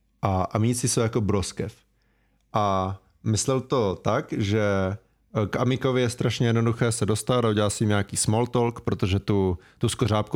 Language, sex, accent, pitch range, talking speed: Czech, male, native, 95-115 Hz, 150 wpm